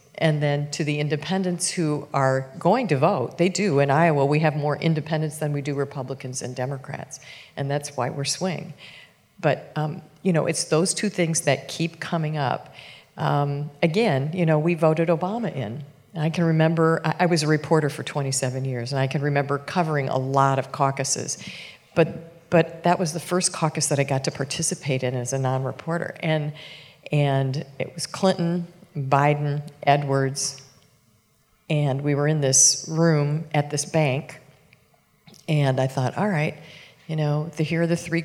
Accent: American